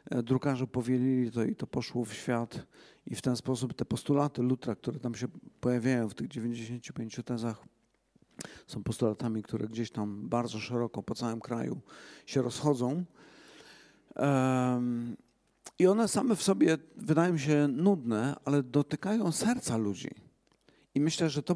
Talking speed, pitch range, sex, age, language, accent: 140 wpm, 120-155 Hz, male, 50-69, Polish, native